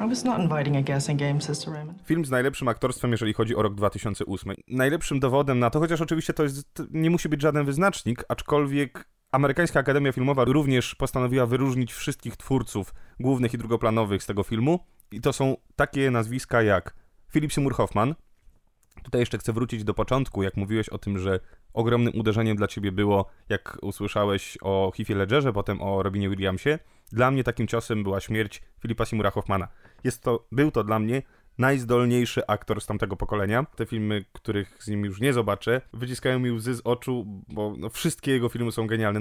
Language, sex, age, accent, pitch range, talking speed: Polish, male, 30-49, native, 105-135 Hz, 165 wpm